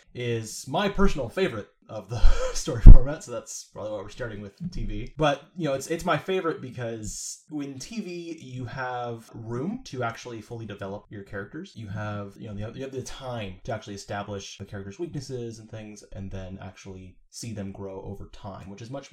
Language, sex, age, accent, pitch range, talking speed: English, male, 20-39, American, 100-125 Hz, 195 wpm